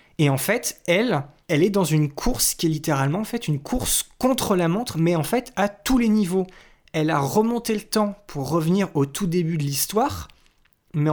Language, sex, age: French, male, 20-39